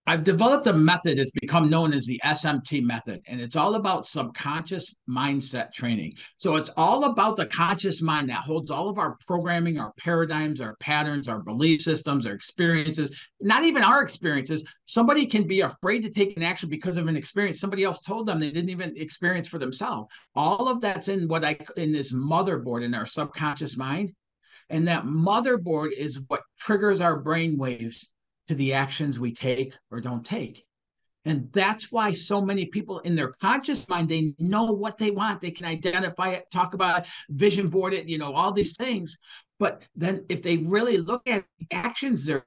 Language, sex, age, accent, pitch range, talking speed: English, male, 50-69, American, 145-190 Hz, 190 wpm